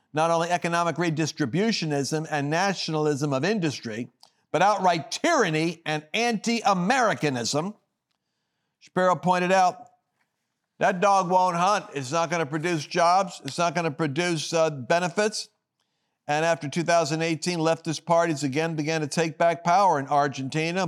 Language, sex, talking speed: English, male, 130 wpm